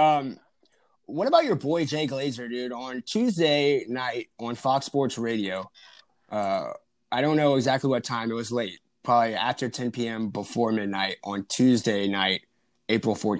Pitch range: 115-140 Hz